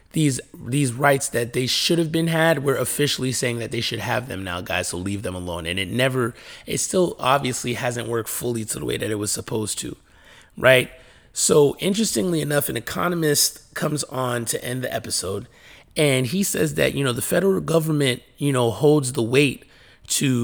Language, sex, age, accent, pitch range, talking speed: English, male, 30-49, American, 115-145 Hz, 195 wpm